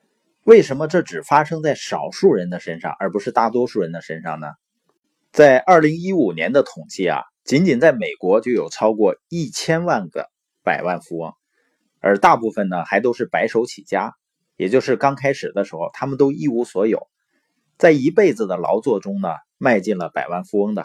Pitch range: 125-195 Hz